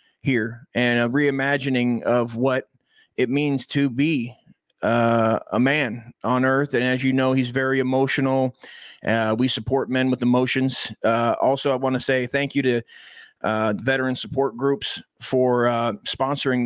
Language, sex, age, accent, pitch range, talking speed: English, male, 30-49, American, 125-145 Hz, 160 wpm